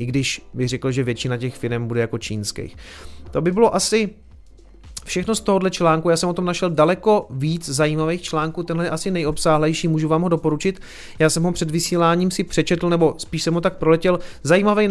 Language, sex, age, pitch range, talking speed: Czech, male, 30-49, 145-175 Hz, 200 wpm